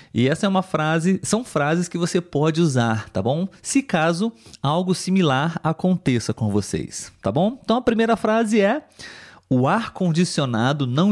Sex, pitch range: male, 125-185 Hz